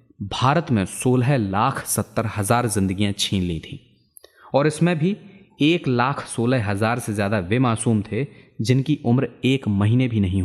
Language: Hindi